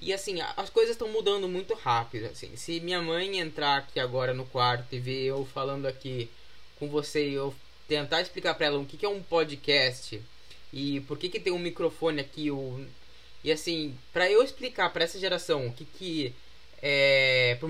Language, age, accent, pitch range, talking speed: Portuguese, 20-39, Brazilian, 140-190 Hz, 195 wpm